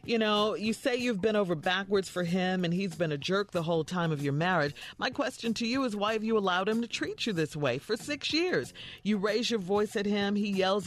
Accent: American